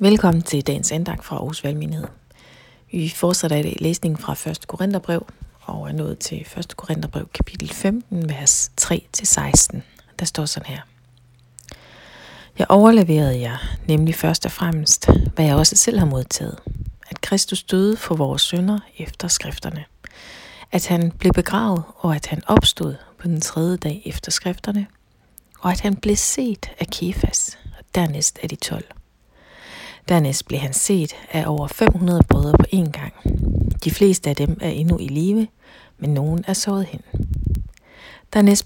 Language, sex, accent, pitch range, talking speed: Danish, female, native, 155-195 Hz, 155 wpm